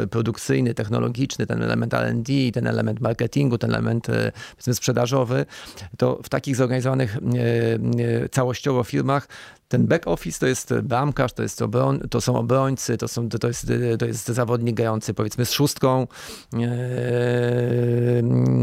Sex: male